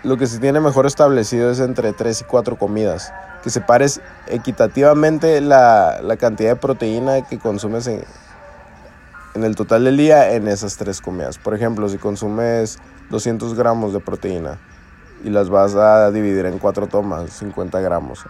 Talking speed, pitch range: 165 wpm, 100-125 Hz